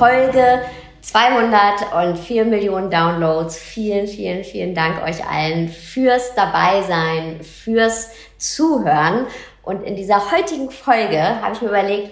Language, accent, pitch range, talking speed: German, German, 180-250 Hz, 115 wpm